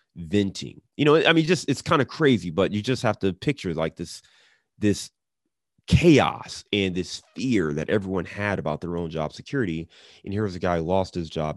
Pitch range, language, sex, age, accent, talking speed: 80-95 Hz, English, male, 30-49, American, 205 wpm